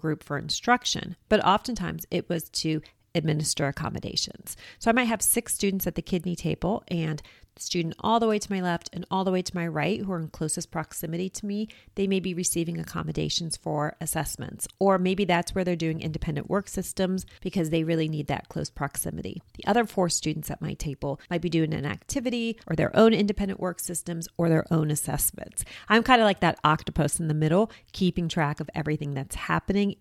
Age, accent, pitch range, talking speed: 40-59, American, 160-205 Hz, 205 wpm